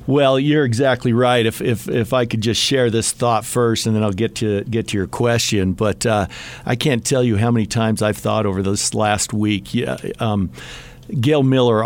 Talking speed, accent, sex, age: 215 wpm, American, male, 50-69